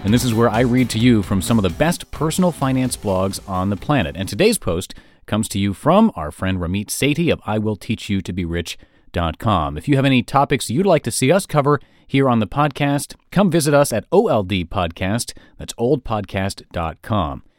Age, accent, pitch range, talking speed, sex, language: 40-59, American, 100-140 Hz, 185 wpm, male, English